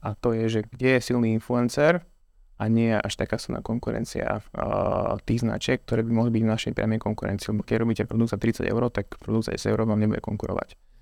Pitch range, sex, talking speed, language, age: 110-120 Hz, male, 220 wpm, Slovak, 20-39